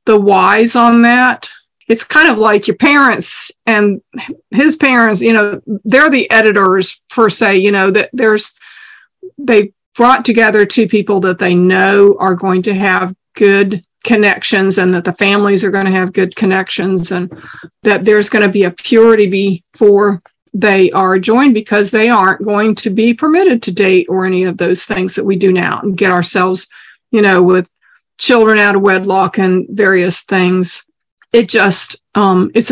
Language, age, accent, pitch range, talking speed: English, 50-69, American, 195-235 Hz, 175 wpm